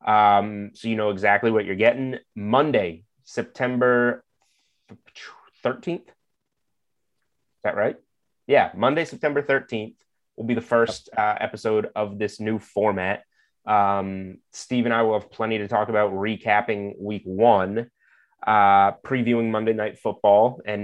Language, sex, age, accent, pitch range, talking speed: English, male, 30-49, American, 100-120 Hz, 135 wpm